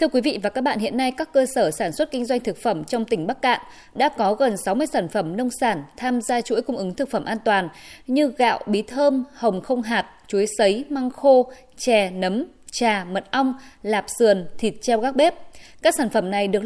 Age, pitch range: 20-39, 205-270 Hz